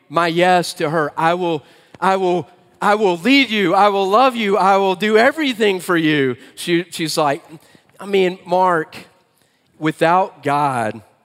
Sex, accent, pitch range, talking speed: male, American, 130-180 Hz, 160 wpm